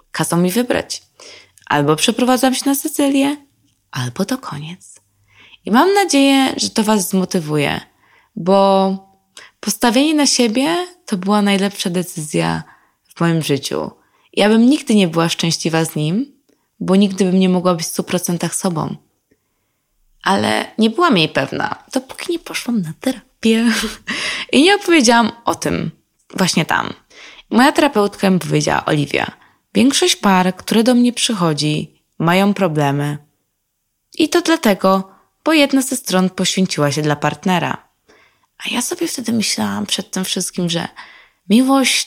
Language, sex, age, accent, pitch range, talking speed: Polish, female, 20-39, native, 165-255 Hz, 135 wpm